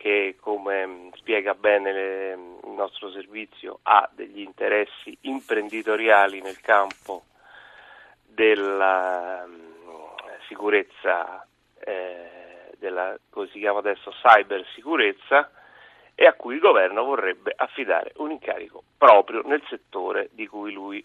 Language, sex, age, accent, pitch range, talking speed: Italian, male, 40-59, native, 100-115 Hz, 95 wpm